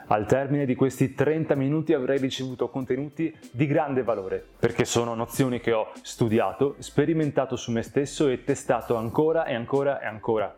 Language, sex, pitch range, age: Italian, male, 120-155 Hz, 20-39